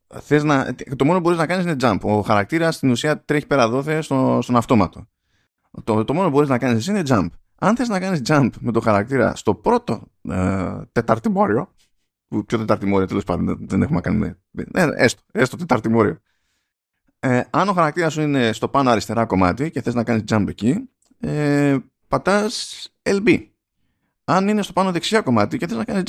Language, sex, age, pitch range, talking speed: Greek, male, 20-39, 110-165 Hz, 190 wpm